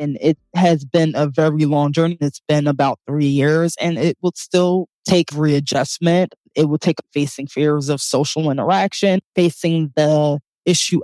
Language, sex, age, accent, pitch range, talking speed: English, female, 20-39, American, 145-170 Hz, 165 wpm